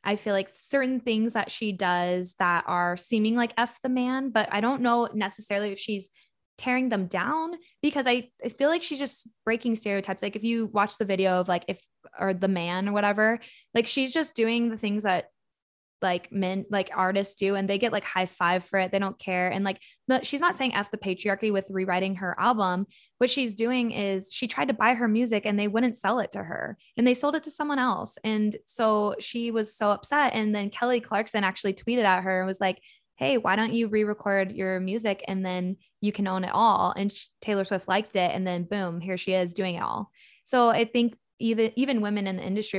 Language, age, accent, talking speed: English, 10-29, American, 225 wpm